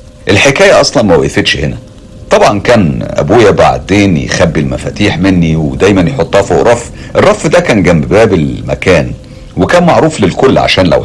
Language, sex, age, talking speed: Arabic, male, 50-69, 145 wpm